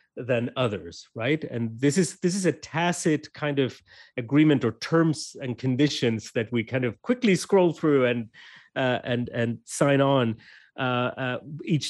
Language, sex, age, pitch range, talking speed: English, male, 30-49, 105-140 Hz, 165 wpm